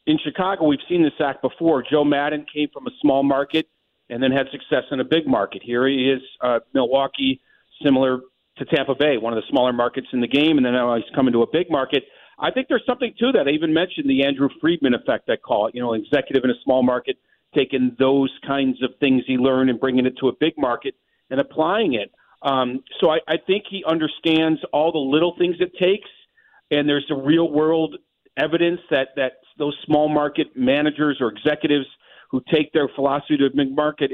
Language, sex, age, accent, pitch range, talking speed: English, male, 40-59, American, 135-180 Hz, 215 wpm